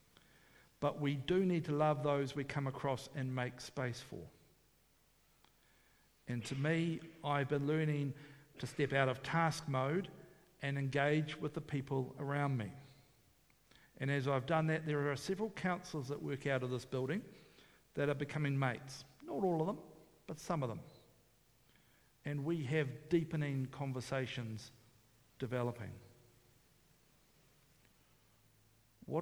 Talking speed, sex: 140 wpm, male